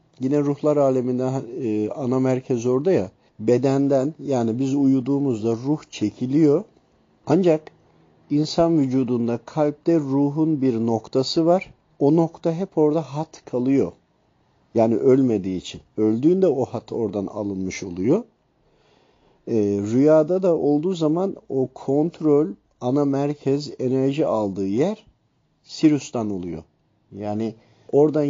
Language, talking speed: Turkish, 110 wpm